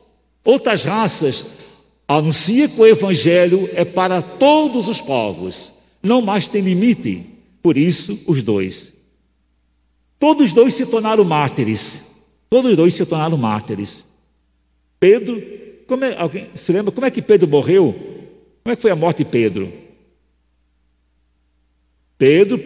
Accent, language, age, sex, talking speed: Brazilian, Portuguese, 60-79, male, 135 wpm